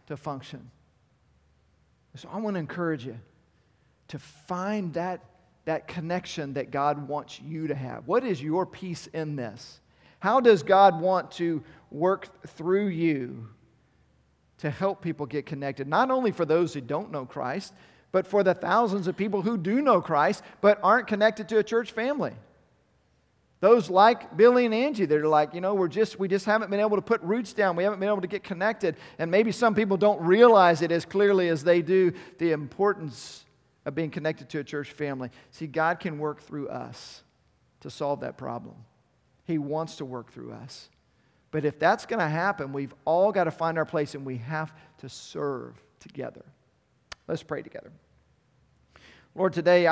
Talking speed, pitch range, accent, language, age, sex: 180 wpm, 145-195 Hz, American, English, 40-59, male